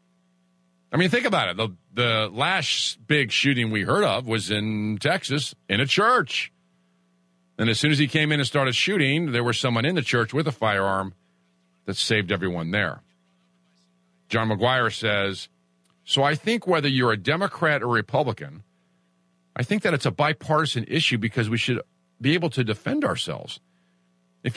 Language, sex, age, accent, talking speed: English, male, 50-69, American, 170 wpm